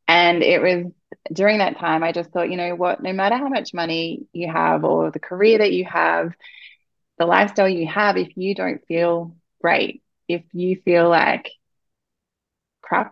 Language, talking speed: English, 180 wpm